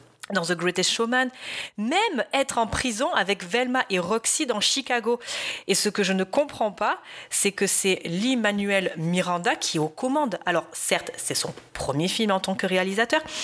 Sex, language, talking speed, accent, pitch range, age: female, French, 180 wpm, French, 165-220 Hz, 30-49